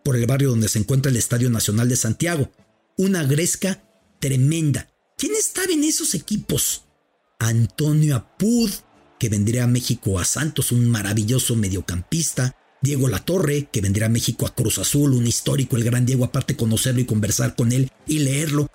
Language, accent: English, Mexican